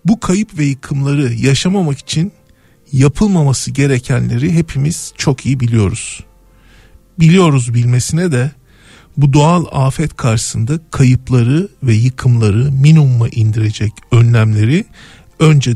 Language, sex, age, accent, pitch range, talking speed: Turkish, male, 50-69, native, 120-155 Hz, 100 wpm